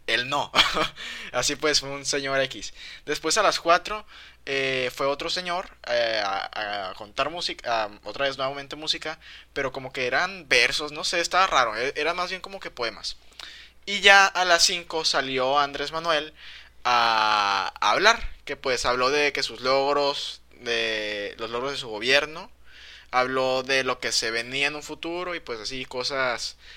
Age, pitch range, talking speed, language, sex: 20-39, 130-175 Hz, 175 wpm, Spanish, male